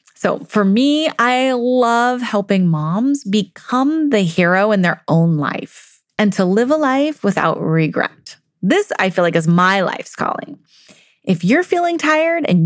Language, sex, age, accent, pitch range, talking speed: English, female, 30-49, American, 190-265 Hz, 160 wpm